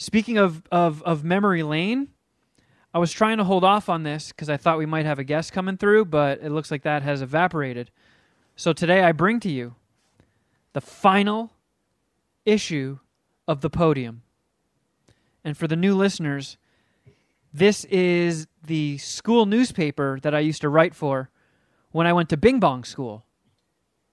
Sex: male